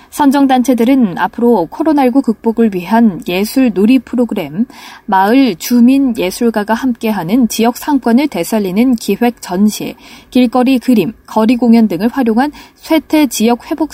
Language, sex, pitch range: Korean, female, 220-265 Hz